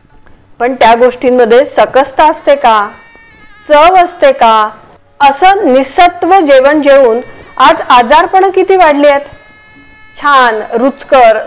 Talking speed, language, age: 100 wpm, Marathi, 40-59